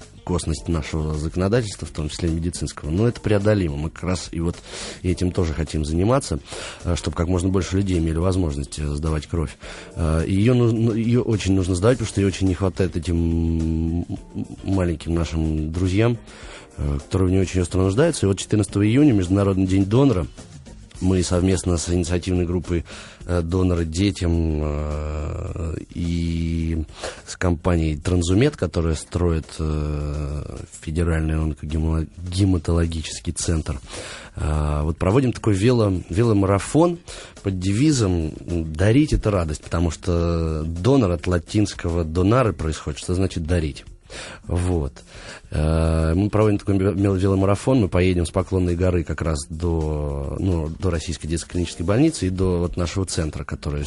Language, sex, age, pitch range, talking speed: Russian, male, 30-49, 80-95 Hz, 130 wpm